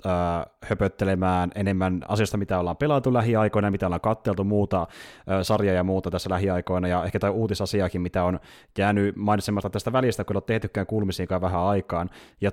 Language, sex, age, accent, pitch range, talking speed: Finnish, male, 30-49, native, 95-125 Hz, 165 wpm